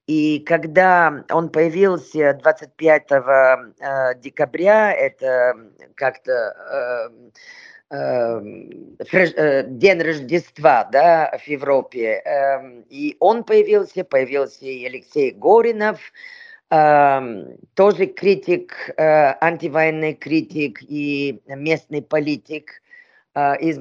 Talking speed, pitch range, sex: 70 wpm, 140-195 Hz, female